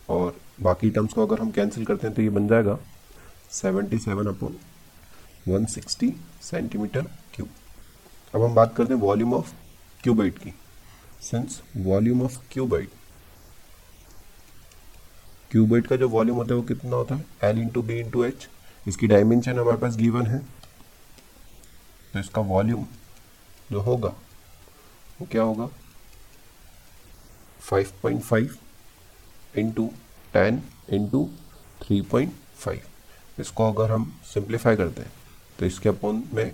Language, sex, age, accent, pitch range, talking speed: Hindi, male, 40-59, native, 95-115 Hz, 120 wpm